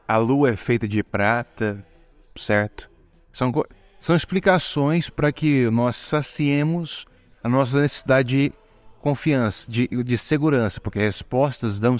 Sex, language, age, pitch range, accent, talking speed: male, Portuguese, 20-39, 105-135 Hz, Brazilian, 125 wpm